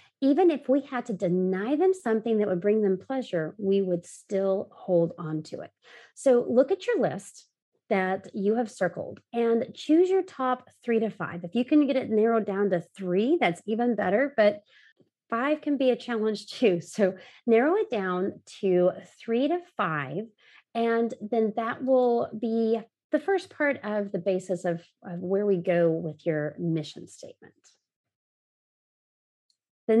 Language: English